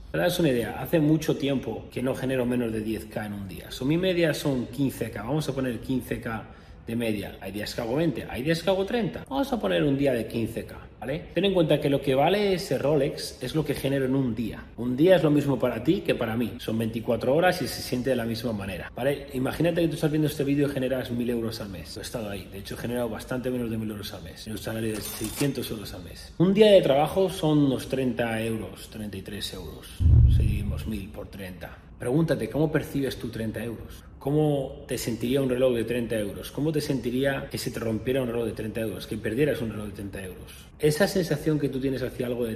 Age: 30-49